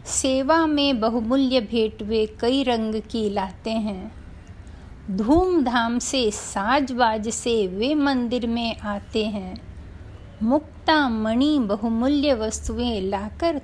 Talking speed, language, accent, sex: 105 wpm, Hindi, native, female